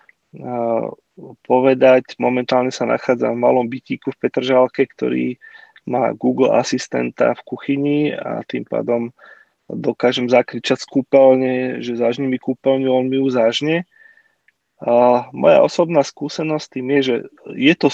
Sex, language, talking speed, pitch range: male, Slovak, 120 wpm, 120-135 Hz